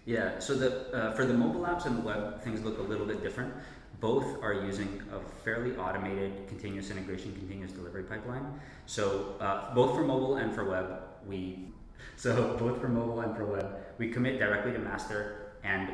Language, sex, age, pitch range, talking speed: Greek, male, 20-39, 95-110 Hz, 190 wpm